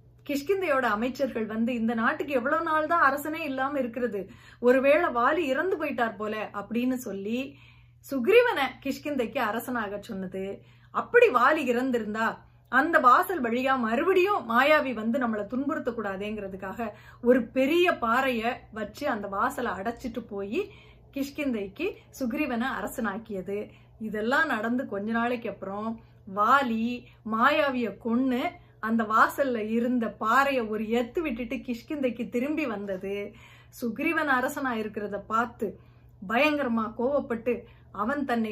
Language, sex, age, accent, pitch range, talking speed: Tamil, female, 30-49, native, 220-275 Hz, 100 wpm